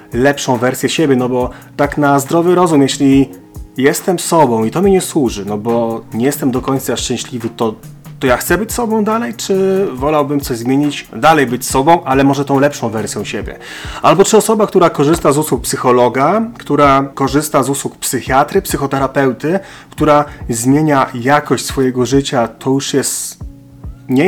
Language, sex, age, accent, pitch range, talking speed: Polish, male, 30-49, native, 130-165 Hz, 165 wpm